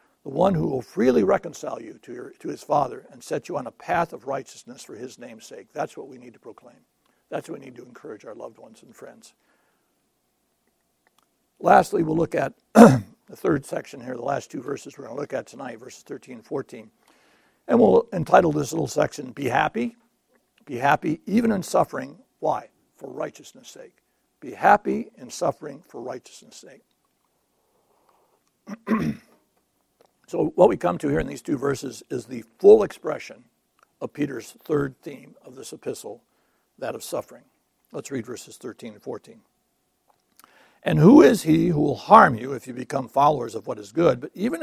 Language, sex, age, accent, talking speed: English, male, 60-79, American, 180 wpm